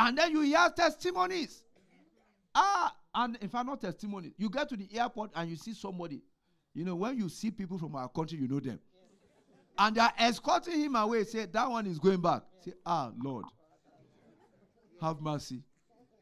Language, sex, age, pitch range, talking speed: English, male, 50-69, 165-250 Hz, 180 wpm